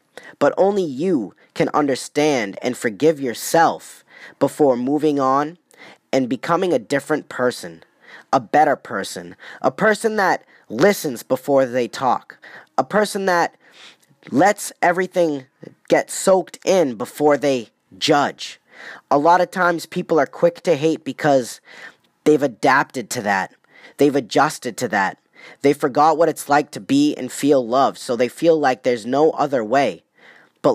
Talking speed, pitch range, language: 145 wpm, 130-160 Hz, English